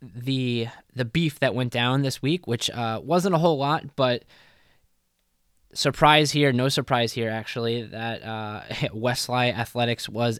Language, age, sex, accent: English, 10-29, male, American